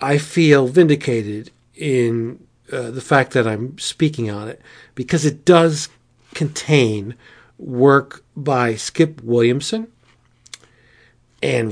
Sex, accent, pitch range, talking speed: male, American, 115-150 Hz, 110 wpm